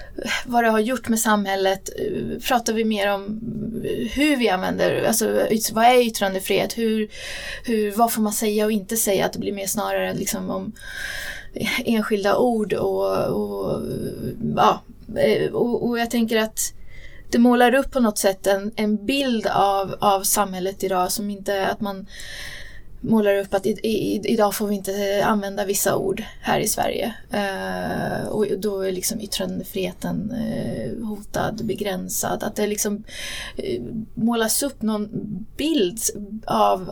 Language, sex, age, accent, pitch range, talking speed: Swedish, female, 20-39, native, 195-225 Hz, 155 wpm